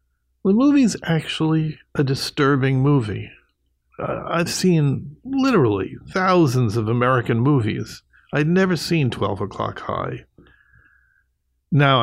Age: 50-69